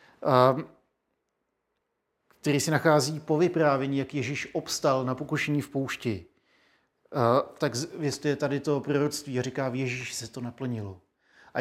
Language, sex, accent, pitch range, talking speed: Czech, male, native, 135-155 Hz, 130 wpm